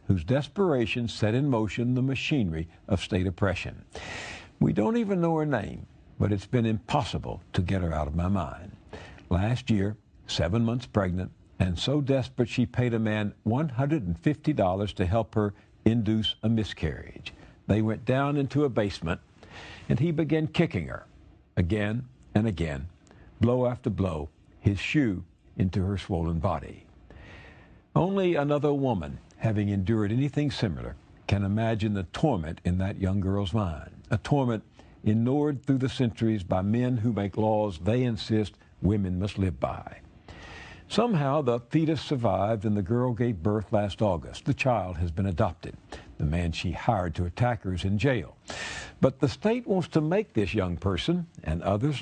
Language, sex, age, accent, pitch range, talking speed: English, male, 60-79, American, 95-125 Hz, 160 wpm